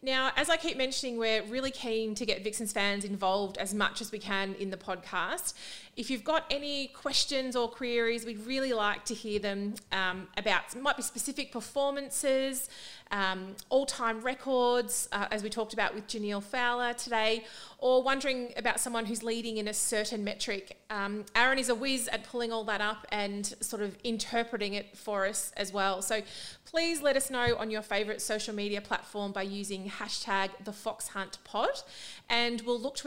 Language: English